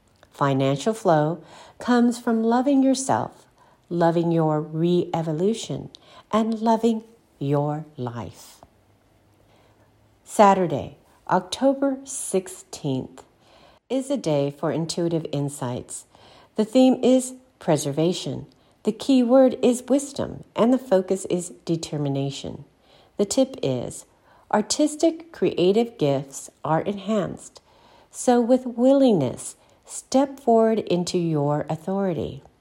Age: 50-69